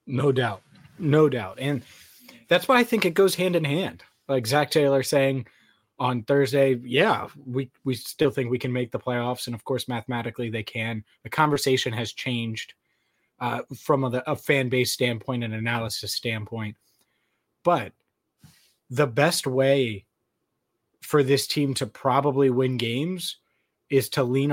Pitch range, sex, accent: 115-135 Hz, male, American